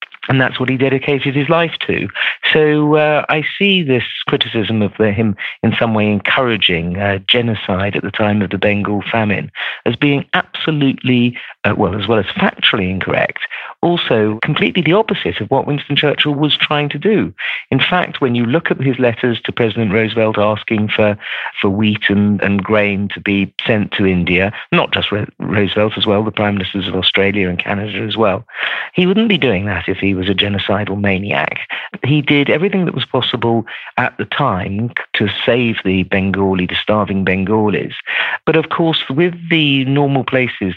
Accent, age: British, 50-69